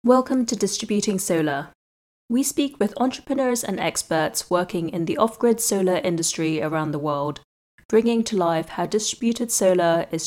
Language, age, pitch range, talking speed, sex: English, 20-39, 165-225 Hz, 150 wpm, female